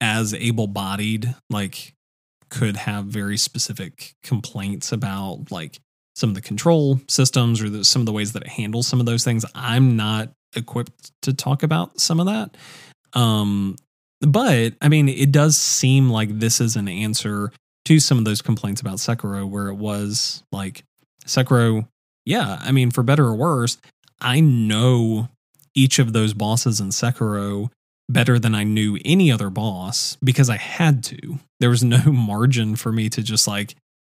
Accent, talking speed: American, 170 wpm